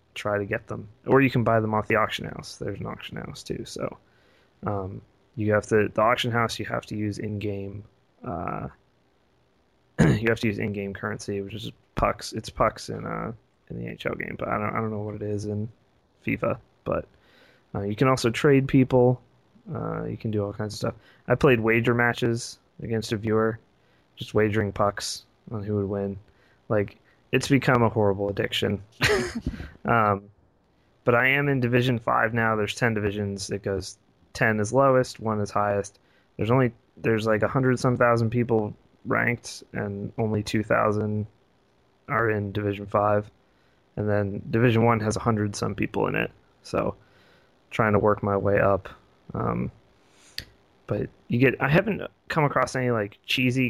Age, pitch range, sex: 20-39, 105-120 Hz, male